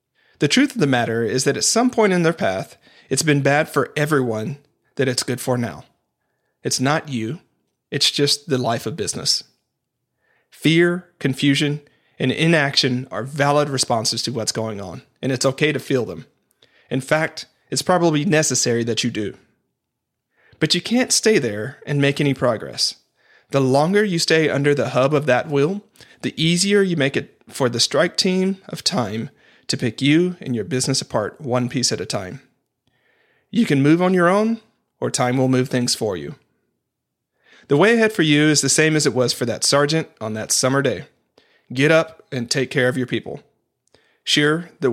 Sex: male